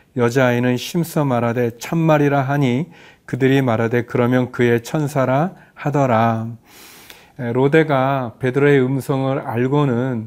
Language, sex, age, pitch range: Korean, male, 40-59, 120-145 Hz